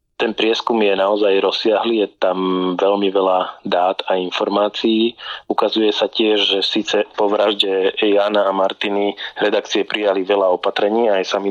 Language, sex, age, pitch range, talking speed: Slovak, male, 20-39, 95-105 Hz, 145 wpm